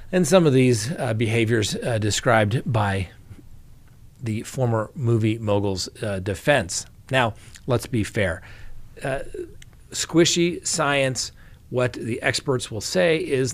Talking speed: 120 wpm